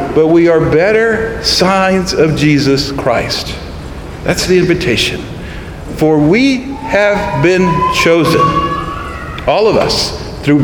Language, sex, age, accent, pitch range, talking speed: English, male, 50-69, American, 150-195 Hz, 115 wpm